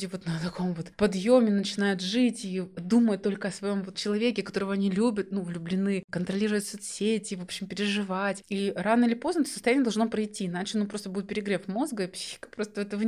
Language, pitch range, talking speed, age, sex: Russian, 190-225 Hz, 195 wpm, 20-39, female